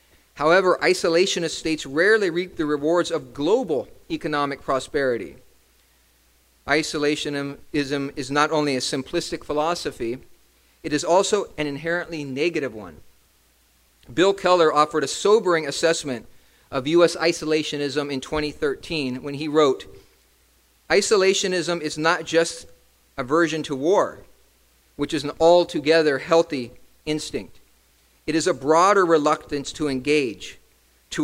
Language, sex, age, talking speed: English, male, 40-59, 115 wpm